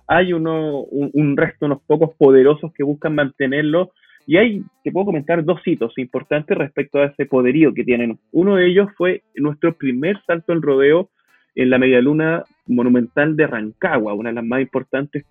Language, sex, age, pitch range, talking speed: Spanish, male, 20-39, 130-165 Hz, 175 wpm